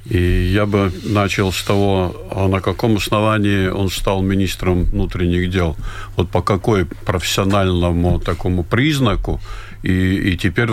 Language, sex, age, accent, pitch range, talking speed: Russian, male, 50-69, native, 90-105 Hz, 135 wpm